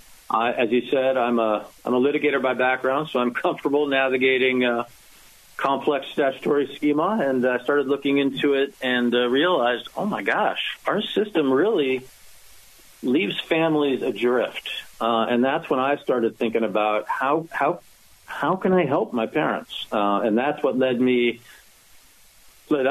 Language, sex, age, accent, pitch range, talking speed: English, male, 40-59, American, 120-150 Hz, 155 wpm